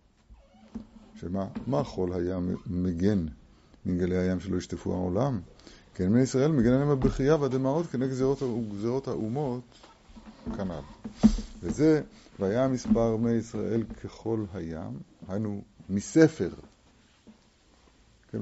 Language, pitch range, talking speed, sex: Hebrew, 90-125 Hz, 105 wpm, male